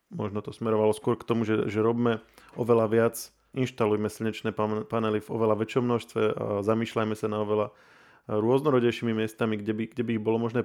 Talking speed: 180 wpm